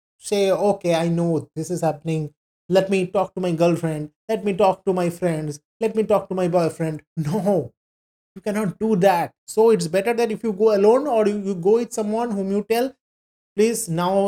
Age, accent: 30-49, native